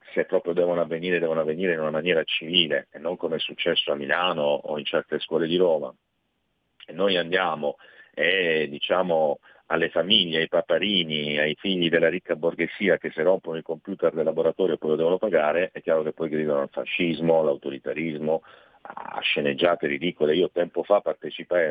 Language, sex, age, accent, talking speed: Italian, male, 40-59, native, 175 wpm